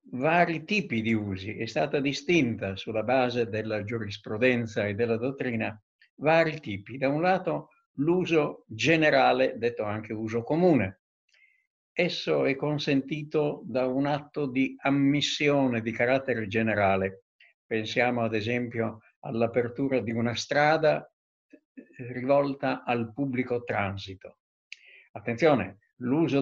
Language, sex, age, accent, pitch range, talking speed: Italian, male, 60-79, native, 115-150 Hz, 110 wpm